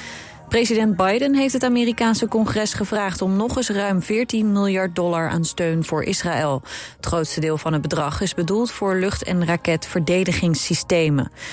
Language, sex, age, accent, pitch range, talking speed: Dutch, female, 30-49, Dutch, 160-205 Hz, 155 wpm